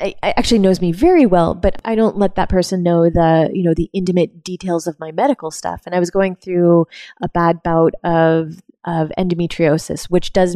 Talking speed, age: 200 wpm, 20-39